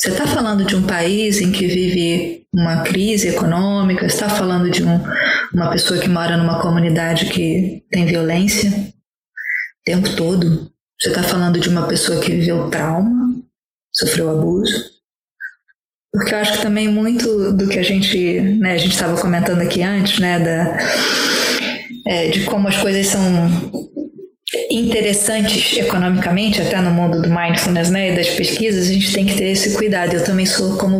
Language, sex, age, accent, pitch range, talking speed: Portuguese, female, 20-39, Brazilian, 175-210 Hz, 160 wpm